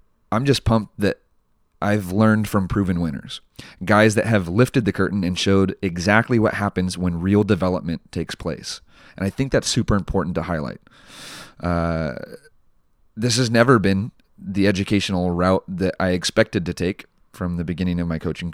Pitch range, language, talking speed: 85-105 Hz, English, 170 wpm